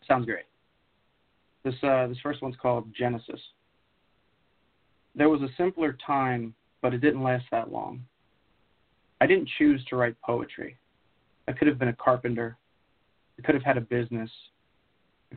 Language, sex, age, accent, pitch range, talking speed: English, male, 40-59, American, 115-135 Hz, 150 wpm